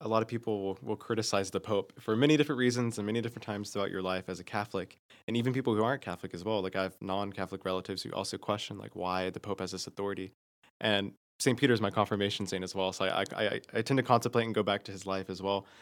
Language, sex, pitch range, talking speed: English, male, 100-120 Hz, 270 wpm